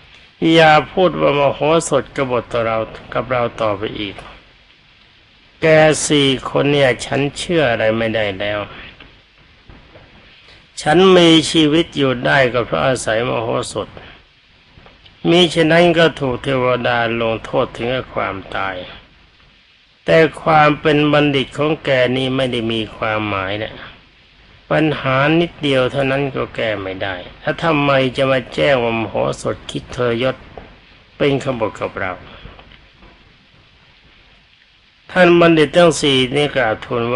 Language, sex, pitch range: Thai, male, 110-150 Hz